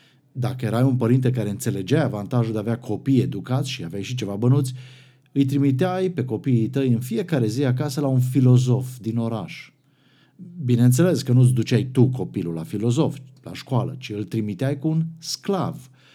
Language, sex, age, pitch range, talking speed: Romanian, male, 50-69, 110-140 Hz, 180 wpm